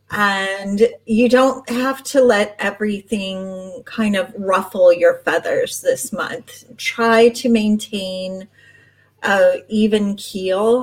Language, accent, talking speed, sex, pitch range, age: English, American, 110 wpm, female, 195-260 Hz, 30-49